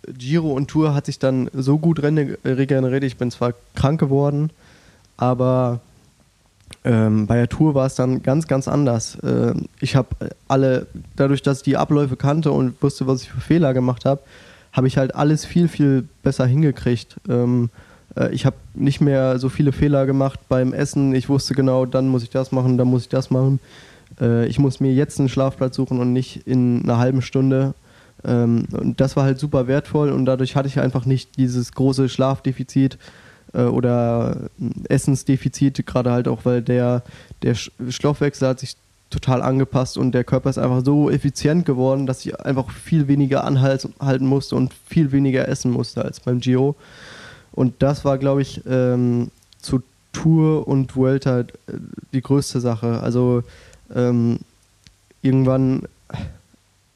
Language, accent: German, German